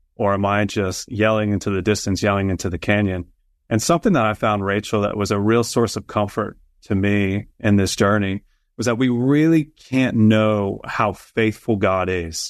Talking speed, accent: 190 wpm, American